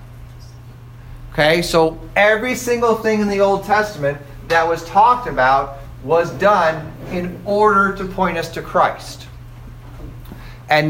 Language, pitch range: English, 125-180 Hz